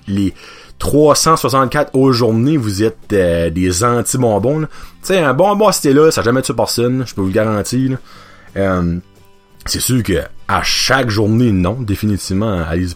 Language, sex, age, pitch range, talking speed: French, male, 30-49, 95-130 Hz, 155 wpm